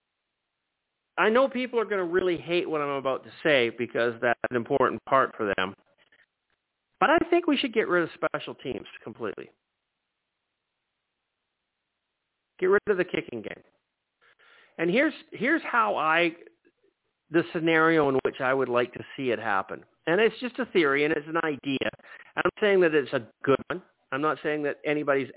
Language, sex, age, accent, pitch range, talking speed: English, male, 50-69, American, 135-220 Hz, 175 wpm